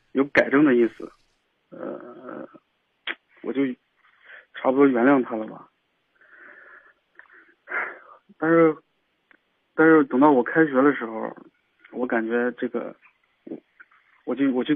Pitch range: 120-155 Hz